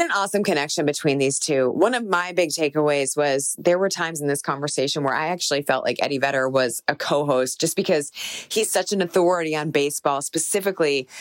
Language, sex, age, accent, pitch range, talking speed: English, female, 20-39, American, 145-175 Hz, 200 wpm